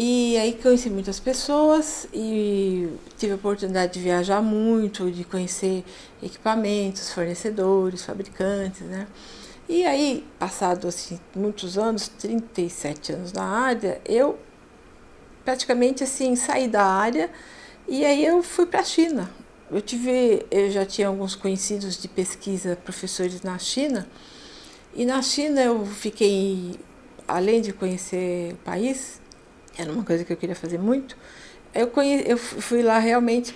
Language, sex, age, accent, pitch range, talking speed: Portuguese, female, 50-69, Brazilian, 190-255 Hz, 140 wpm